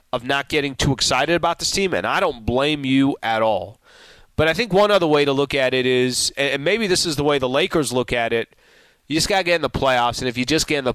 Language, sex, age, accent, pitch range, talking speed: English, male, 30-49, American, 110-140 Hz, 285 wpm